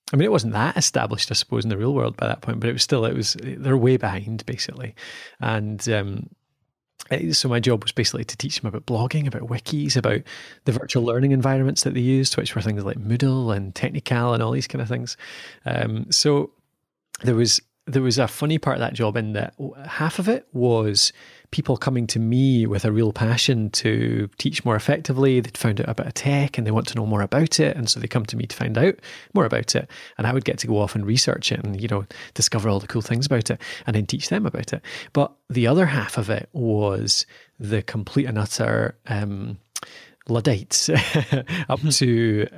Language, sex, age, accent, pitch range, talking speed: English, male, 30-49, British, 110-135 Hz, 220 wpm